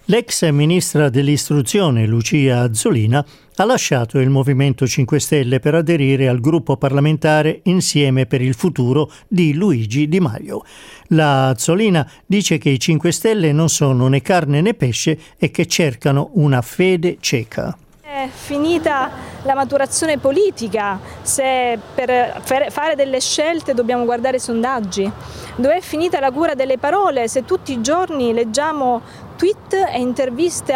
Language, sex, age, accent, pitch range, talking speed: Italian, male, 50-69, native, 140-225 Hz, 140 wpm